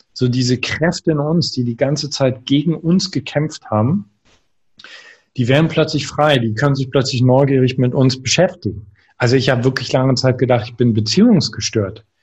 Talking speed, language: 170 wpm, German